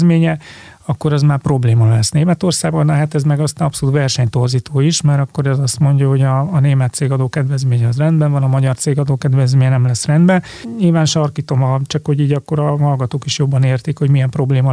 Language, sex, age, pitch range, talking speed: Hungarian, male, 30-49, 135-150 Hz, 200 wpm